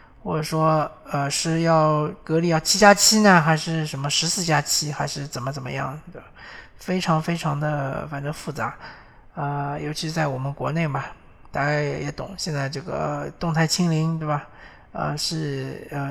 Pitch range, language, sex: 145-175 Hz, Chinese, male